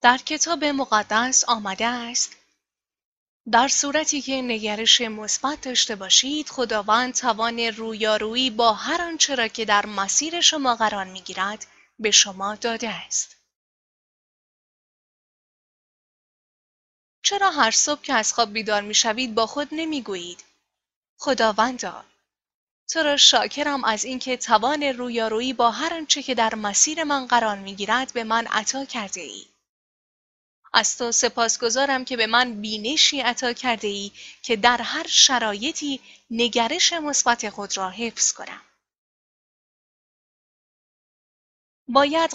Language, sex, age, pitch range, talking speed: Persian, female, 10-29, 220-275 Hz, 115 wpm